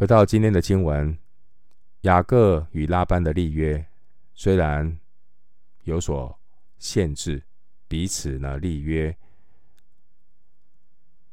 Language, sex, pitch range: Chinese, male, 70-95 Hz